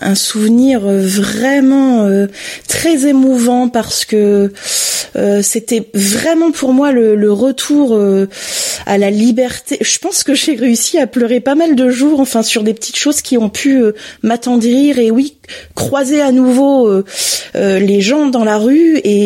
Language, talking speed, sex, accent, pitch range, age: French, 170 wpm, female, French, 200-260 Hz, 30-49